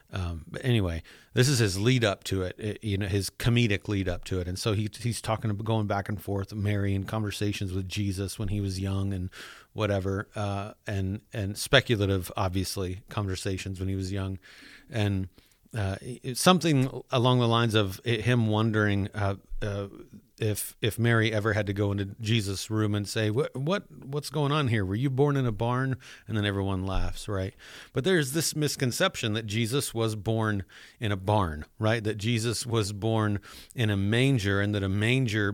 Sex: male